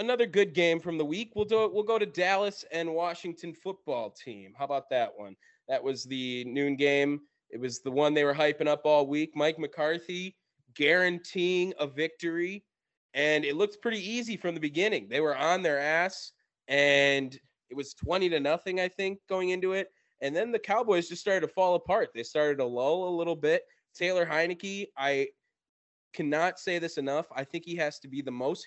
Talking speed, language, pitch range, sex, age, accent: 200 wpm, English, 135-185 Hz, male, 20-39, American